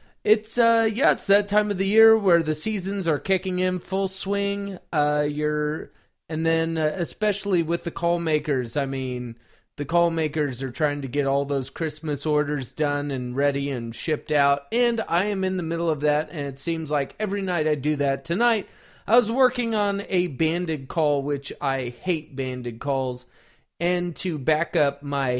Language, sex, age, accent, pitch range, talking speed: English, male, 30-49, American, 145-190 Hz, 190 wpm